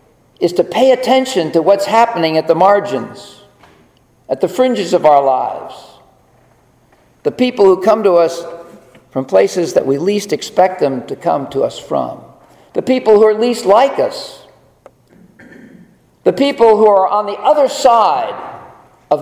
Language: English